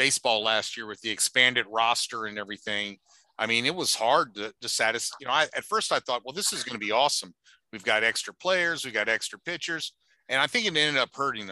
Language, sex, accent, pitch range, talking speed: English, male, American, 110-135 Hz, 240 wpm